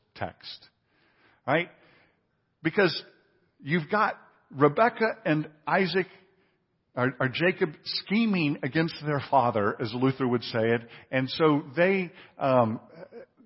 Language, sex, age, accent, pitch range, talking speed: English, male, 50-69, American, 145-210 Hz, 105 wpm